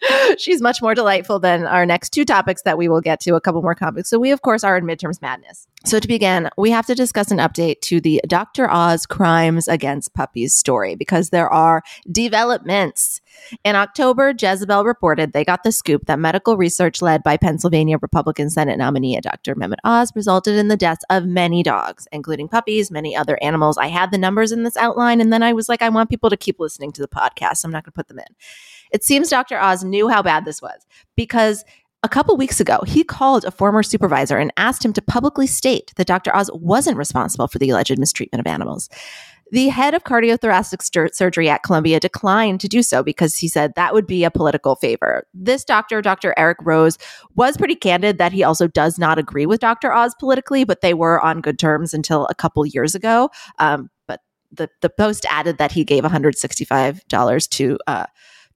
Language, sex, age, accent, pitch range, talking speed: English, female, 20-39, American, 155-225 Hz, 210 wpm